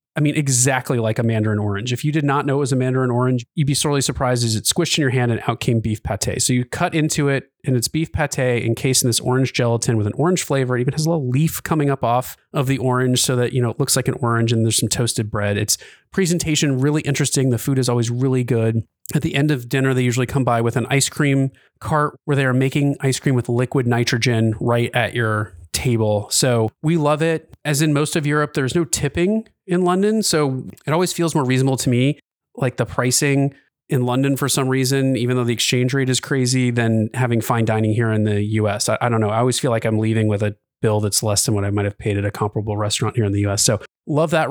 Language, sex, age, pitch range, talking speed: English, male, 30-49, 115-140 Hz, 255 wpm